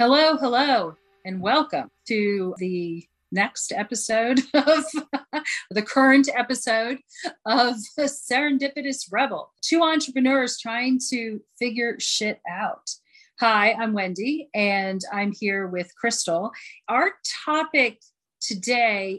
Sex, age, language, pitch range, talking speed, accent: female, 40-59, English, 205-265 Hz, 105 wpm, American